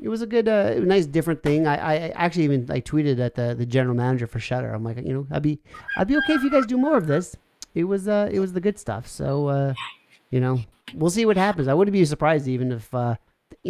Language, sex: English, male